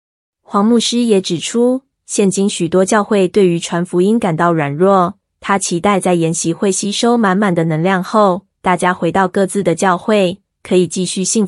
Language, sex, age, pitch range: Chinese, female, 20-39, 175-210 Hz